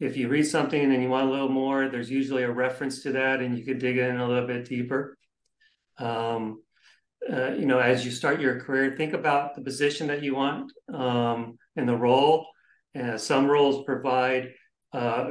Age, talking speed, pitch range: 40-59, 195 wpm, 125-140 Hz